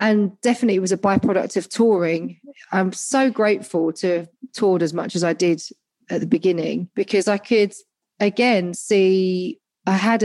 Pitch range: 175-210 Hz